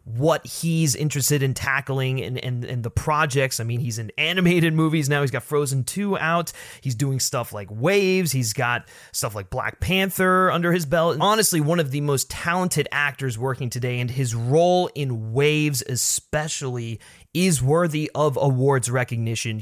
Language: English